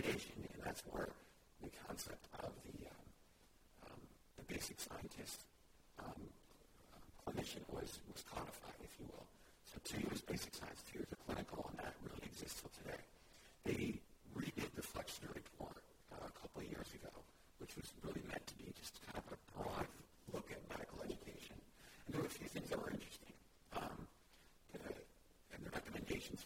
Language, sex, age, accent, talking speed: English, female, 50-69, American, 170 wpm